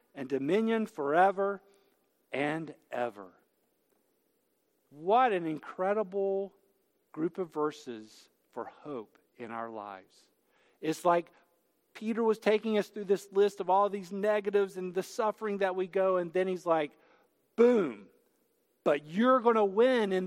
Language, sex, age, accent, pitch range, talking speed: English, male, 50-69, American, 185-240 Hz, 135 wpm